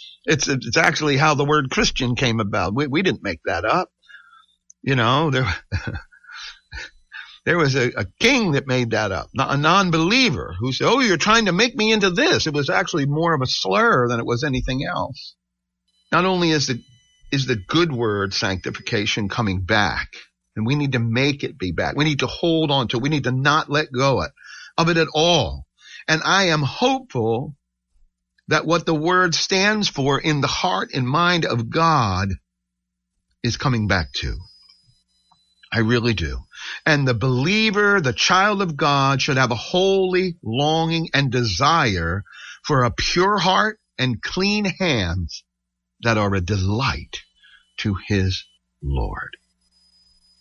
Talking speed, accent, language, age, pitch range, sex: 170 wpm, American, English, 50-69, 95-160 Hz, male